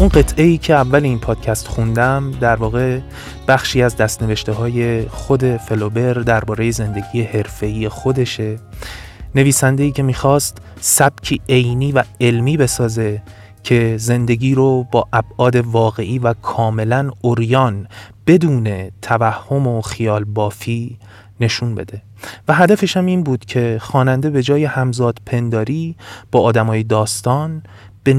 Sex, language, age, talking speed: male, Persian, 30-49, 125 wpm